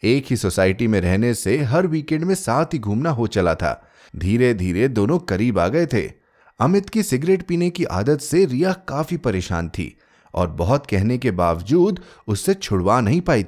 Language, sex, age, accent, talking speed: Hindi, male, 30-49, native, 185 wpm